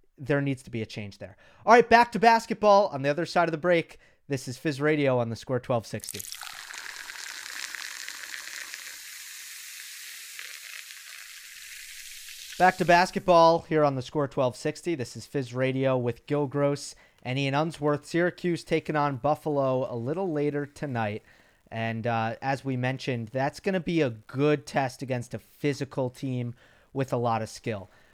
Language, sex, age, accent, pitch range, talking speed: English, male, 30-49, American, 125-160 Hz, 160 wpm